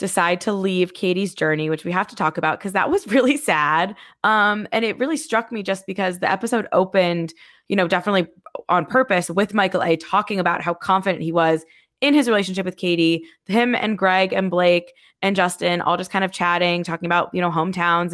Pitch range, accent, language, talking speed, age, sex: 165-205 Hz, American, English, 210 wpm, 20-39, female